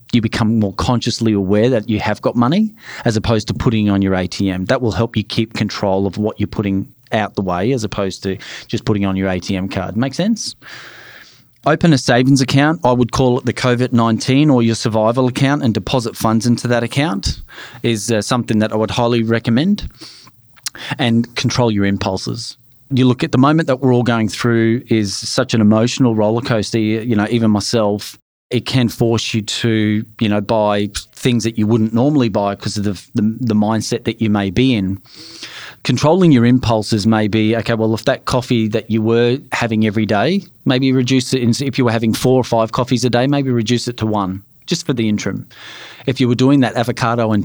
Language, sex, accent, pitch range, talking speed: English, male, Australian, 110-130 Hz, 210 wpm